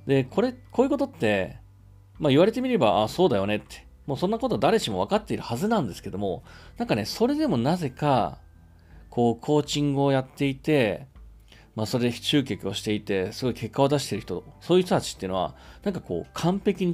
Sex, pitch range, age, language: male, 100-155 Hz, 40-59, Japanese